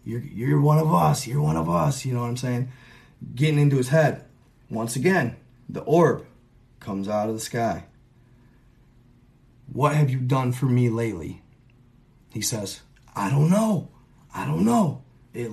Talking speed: 165 wpm